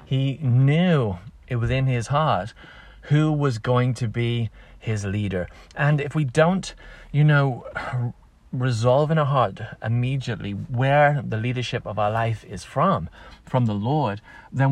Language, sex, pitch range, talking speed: English, male, 115-140 Hz, 150 wpm